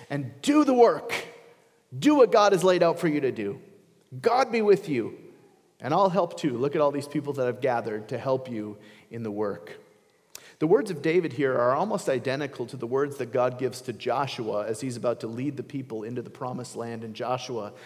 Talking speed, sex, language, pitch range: 220 wpm, male, English, 120-165 Hz